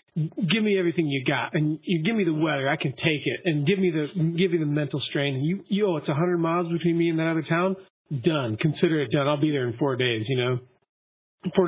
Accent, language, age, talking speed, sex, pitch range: American, English, 40-59, 260 wpm, male, 135-175 Hz